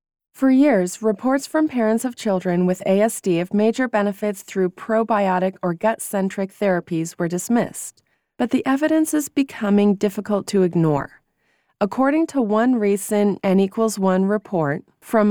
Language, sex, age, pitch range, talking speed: English, female, 30-49, 185-235 Hz, 140 wpm